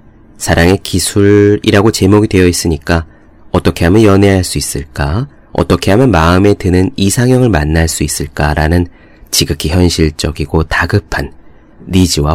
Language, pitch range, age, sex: Korean, 80-110 Hz, 30-49, male